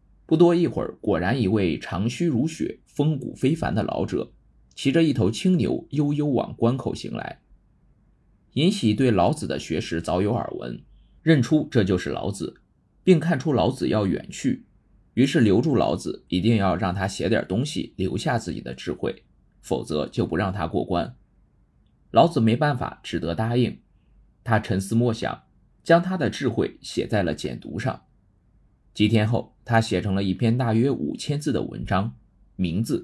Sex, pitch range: male, 95-130 Hz